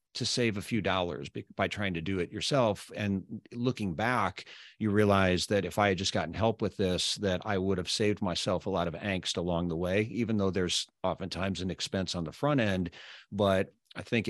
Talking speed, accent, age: 215 wpm, American, 40-59